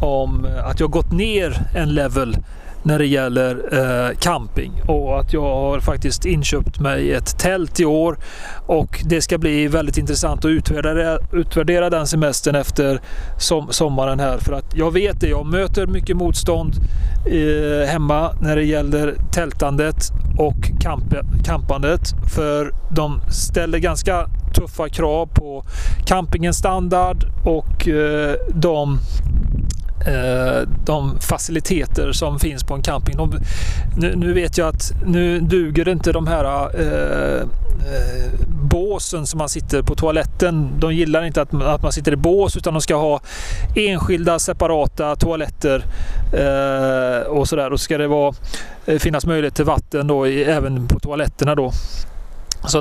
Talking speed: 140 wpm